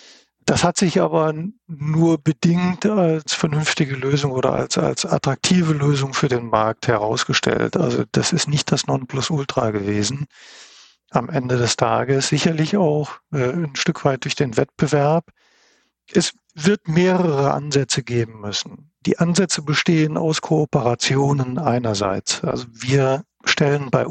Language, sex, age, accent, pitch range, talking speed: German, male, 50-69, German, 125-165 Hz, 130 wpm